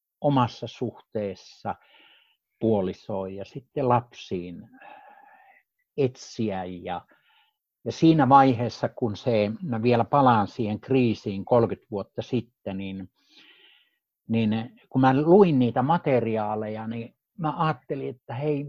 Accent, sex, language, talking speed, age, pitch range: native, male, Finnish, 100 wpm, 60-79, 110-160 Hz